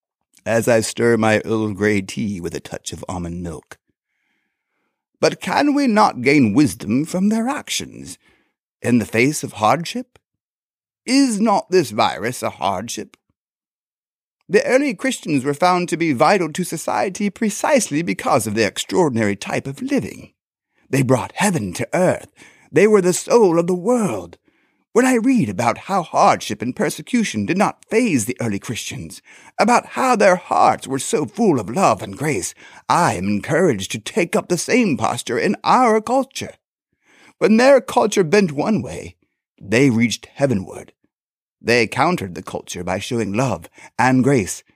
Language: English